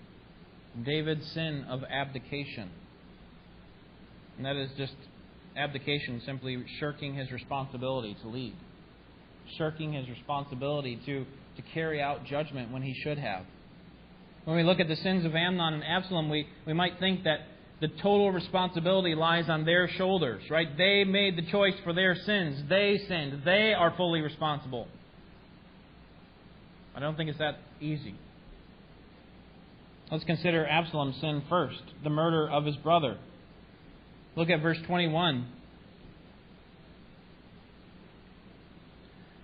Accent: American